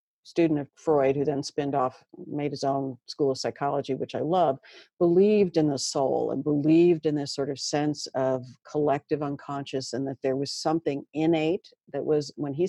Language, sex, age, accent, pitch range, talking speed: English, female, 50-69, American, 140-170 Hz, 190 wpm